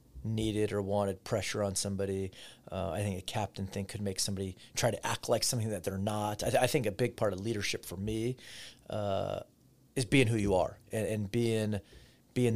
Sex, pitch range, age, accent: male, 100-120 Hz, 30-49, American